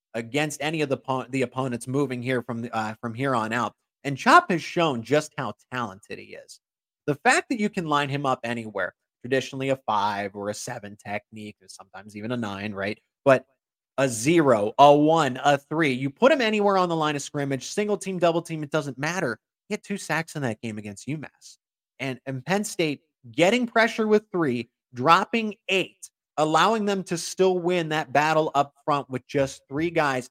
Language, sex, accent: English, male, American